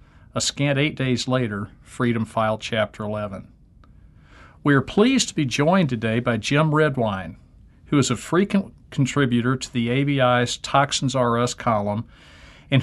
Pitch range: 115-140 Hz